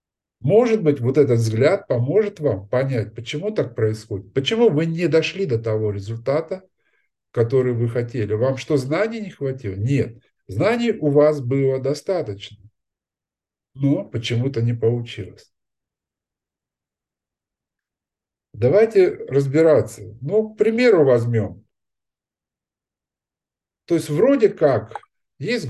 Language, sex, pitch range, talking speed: Russian, male, 110-155 Hz, 110 wpm